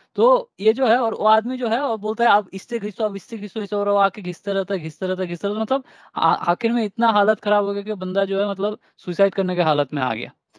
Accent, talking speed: native, 260 wpm